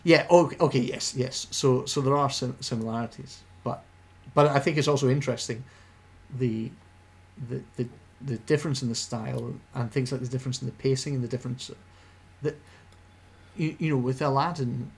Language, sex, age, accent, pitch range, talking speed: English, male, 40-59, British, 95-130 Hz, 170 wpm